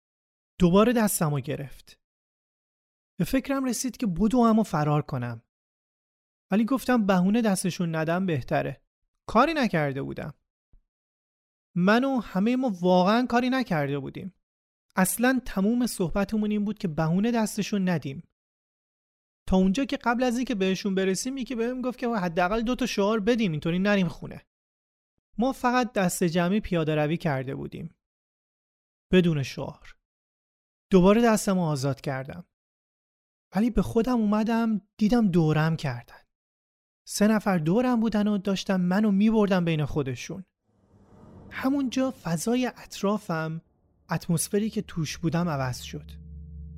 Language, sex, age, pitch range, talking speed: Persian, male, 30-49, 135-220 Hz, 125 wpm